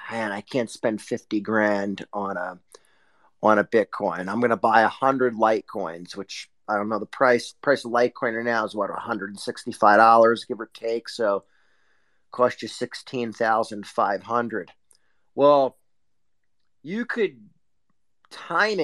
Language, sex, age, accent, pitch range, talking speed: English, male, 40-59, American, 110-140 Hz, 155 wpm